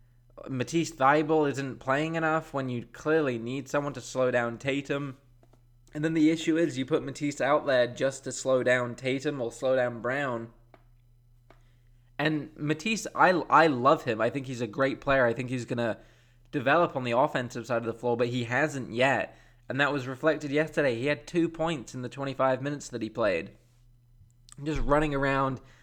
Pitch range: 120-145 Hz